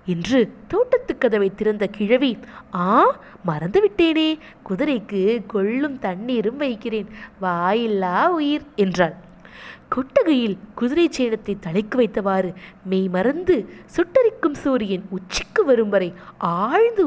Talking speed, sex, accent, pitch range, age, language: 95 wpm, female, native, 205-290 Hz, 20-39, Tamil